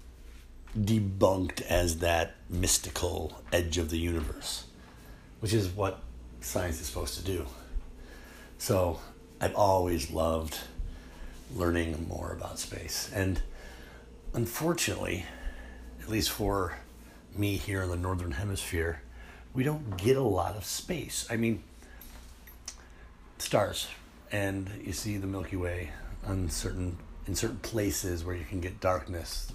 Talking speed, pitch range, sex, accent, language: 125 wpm, 80-100 Hz, male, American, English